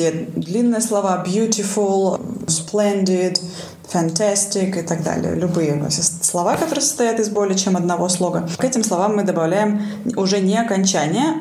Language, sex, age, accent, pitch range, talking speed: Russian, female, 20-39, native, 180-225 Hz, 130 wpm